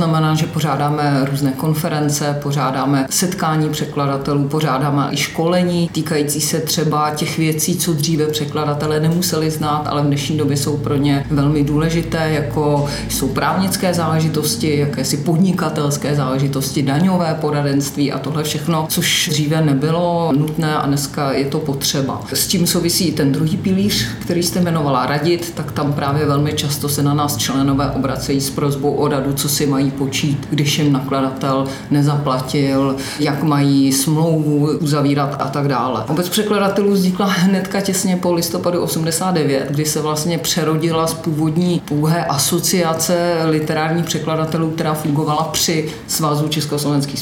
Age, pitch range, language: 40-59, 145-165 Hz, Czech